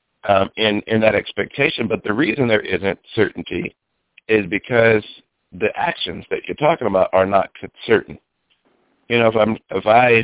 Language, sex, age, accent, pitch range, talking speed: English, male, 50-69, American, 95-110 Hz, 165 wpm